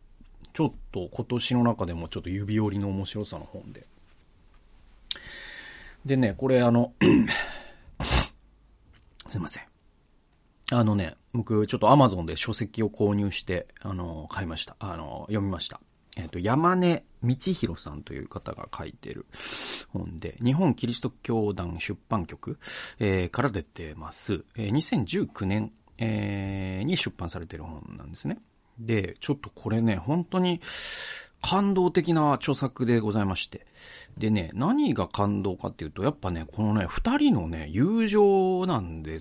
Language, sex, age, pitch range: Japanese, male, 40-59, 95-135 Hz